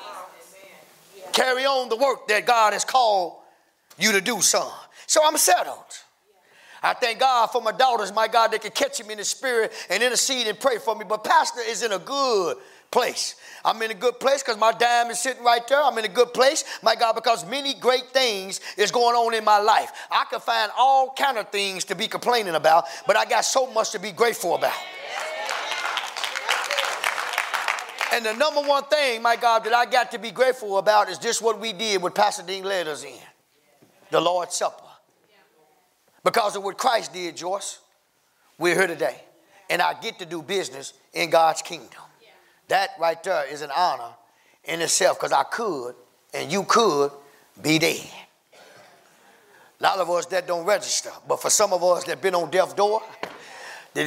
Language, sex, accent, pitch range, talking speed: English, male, American, 190-245 Hz, 190 wpm